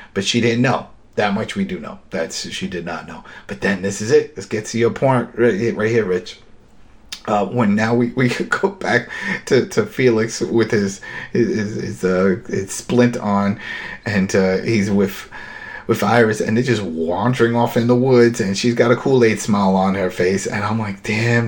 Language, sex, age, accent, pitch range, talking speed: English, male, 30-49, American, 105-125 Hz, 205 wpm